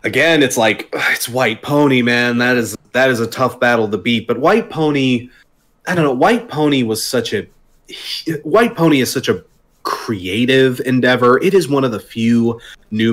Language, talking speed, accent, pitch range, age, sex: English, 185 wpm, American, 115-165 Hz, 30-49, male